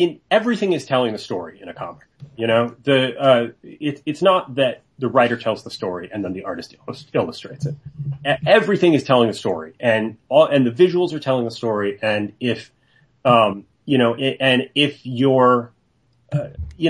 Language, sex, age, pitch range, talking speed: English, male, 30-49, 115-145 Hz, 190 wpm